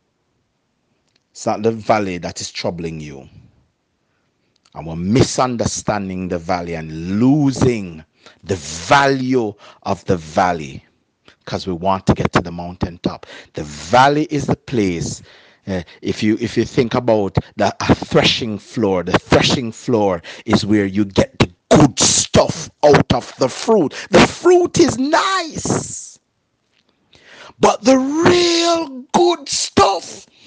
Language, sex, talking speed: English, male, 130 wpm